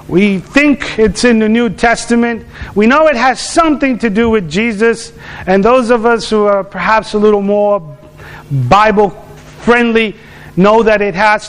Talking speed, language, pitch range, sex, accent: 165 wpm, English, 185-250 Hz, male, American